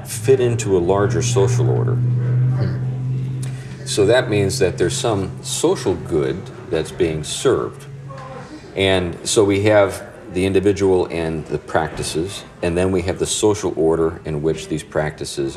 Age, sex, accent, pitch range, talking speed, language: 50-69, male, American, 80-125 Hz, 145 wpm, English